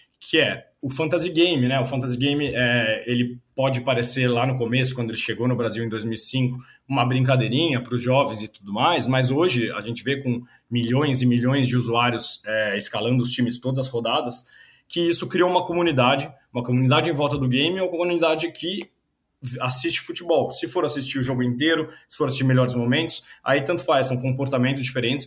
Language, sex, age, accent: Portuguese, male, 20-39, Brazilian